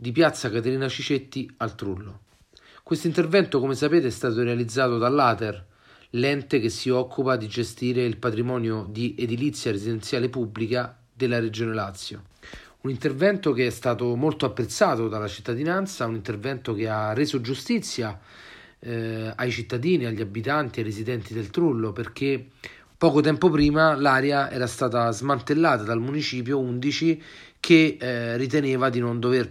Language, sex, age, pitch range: Italian, male, 40-59, 115-160 Hz